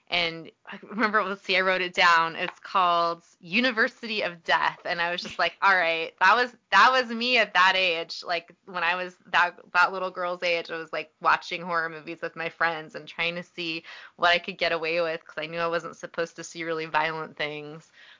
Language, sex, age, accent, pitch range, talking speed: English, female, 20-39, American, 170-230 Hz, 225 wpm